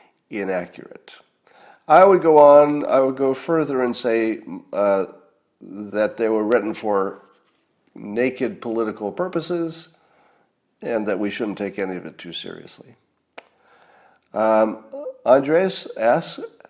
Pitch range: 100-145 Hz